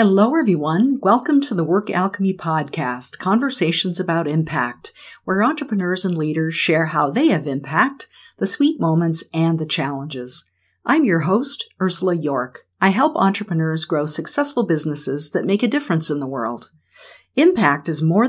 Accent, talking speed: American, 155 wpm